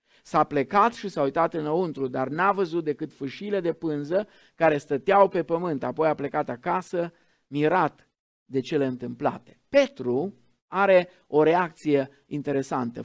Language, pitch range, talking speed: Romanian, 135-190 Hz, 140 wpm